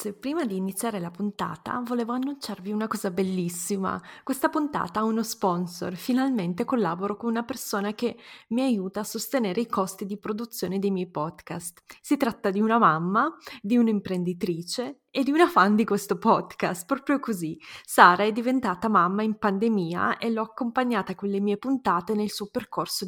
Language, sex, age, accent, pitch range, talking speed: Italian, female, 20-39, native, 190-240 Hz, 165 wpm